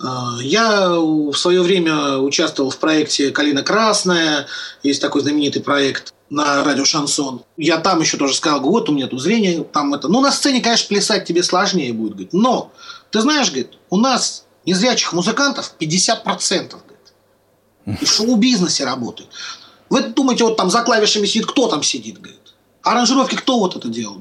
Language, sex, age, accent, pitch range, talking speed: Russian, male, 30-49, native, 155-250 Hz, 165 wpm